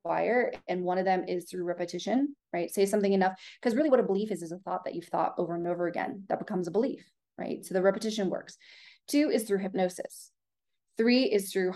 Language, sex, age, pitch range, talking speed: English, female, 20-39, 180-215 Hz, 225 wpm